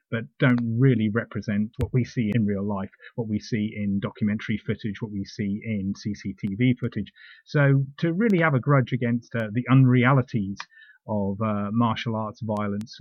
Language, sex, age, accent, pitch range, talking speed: English, male, 30-49, British, 115-145 Hz, 170 wpm